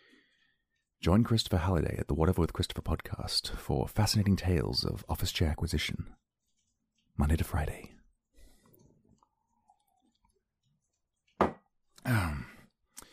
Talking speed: 90 wpm